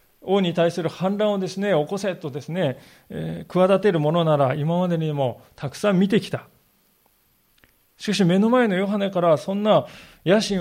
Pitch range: 140-195 Hz